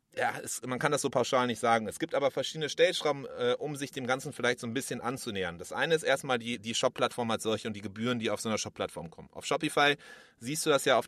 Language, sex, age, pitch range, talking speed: German, male, 30-49, 115-135 Hz, 265 wpm